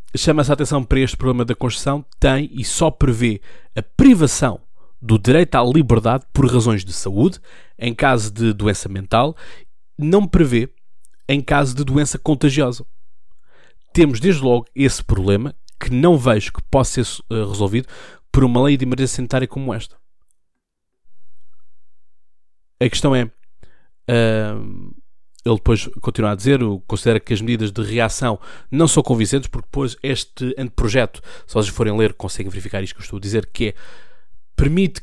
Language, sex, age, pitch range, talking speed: Portuguese, male, 20-39, 110-140 Hz, 155 wpm